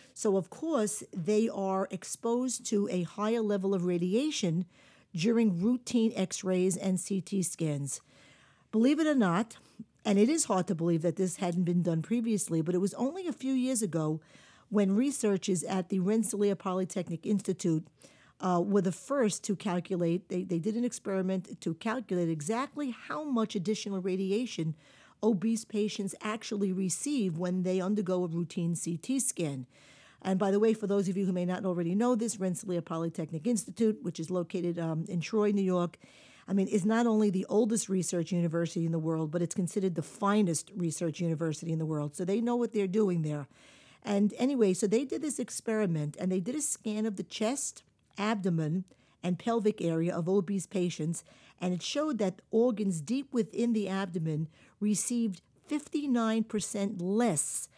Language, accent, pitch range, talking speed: English, American, 175-220 Hz, 170 wpm